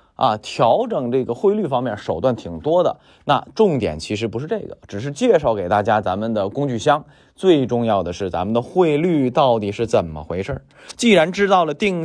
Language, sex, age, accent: Chinese, male, 20-39, native